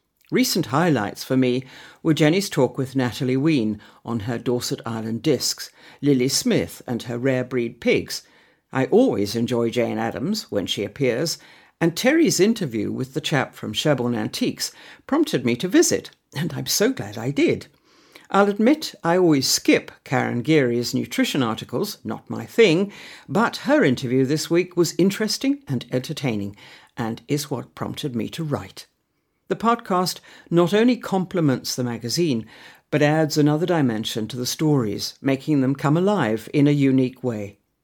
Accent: British